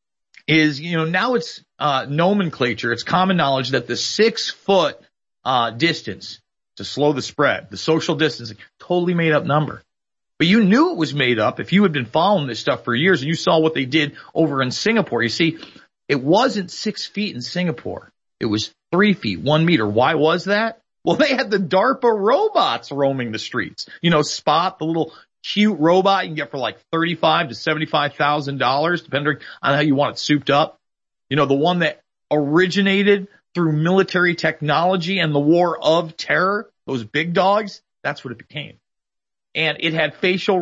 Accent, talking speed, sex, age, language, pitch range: American, 190 wpm, male, 40-59, English, 145-190 Hz